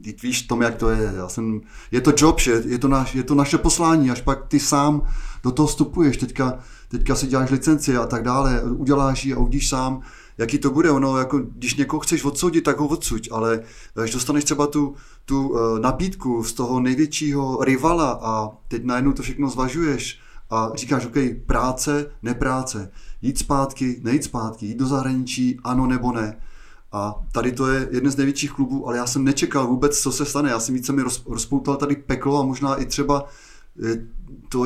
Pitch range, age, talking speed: 120-140 Hz, 30-49, 190 wpm